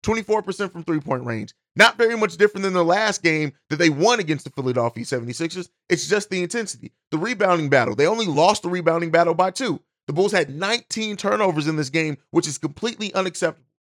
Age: 30-49